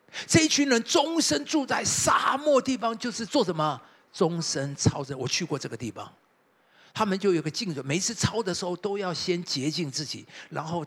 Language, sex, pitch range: Chinese, male, 160-245 Hz